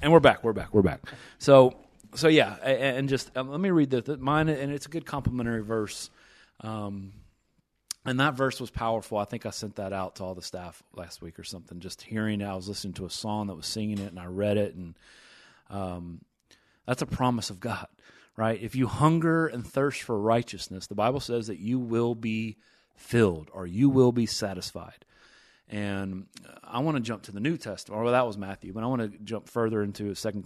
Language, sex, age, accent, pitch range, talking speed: English, male, 30-49, American, 100-130 Hz, 220 wpm